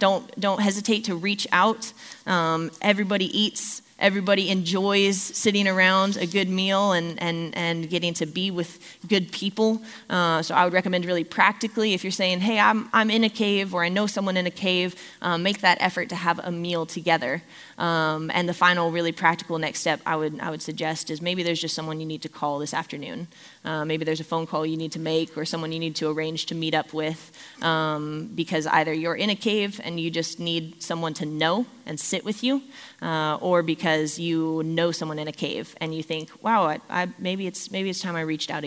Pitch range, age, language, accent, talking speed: 160-190 Hz, 20-39, English, American, 220 wpm